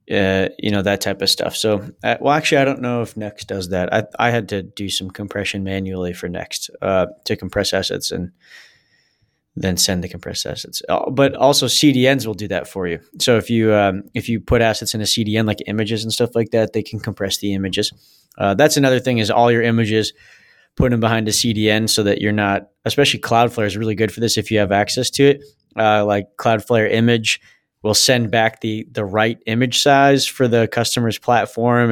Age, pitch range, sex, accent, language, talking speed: 20-39, 105-125 Hz, male, American, English, 215 wpm